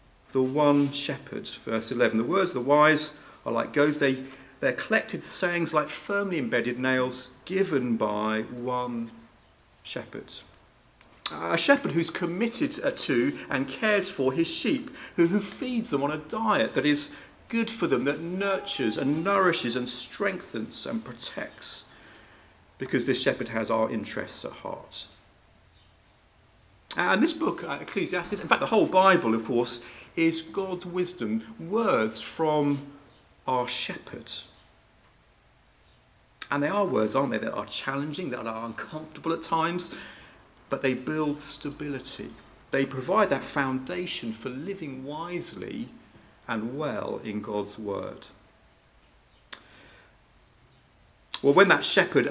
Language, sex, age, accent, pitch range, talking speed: English, male, 40-59, British, 115-165 Hz, 130 wpm